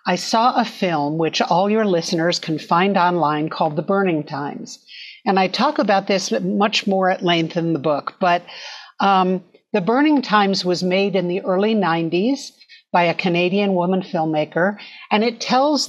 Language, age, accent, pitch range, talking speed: English, 50-69, American, 175-240 Hz, 175 wpm